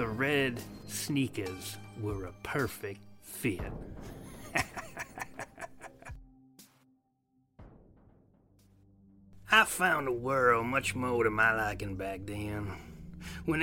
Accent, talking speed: American, 85 wpm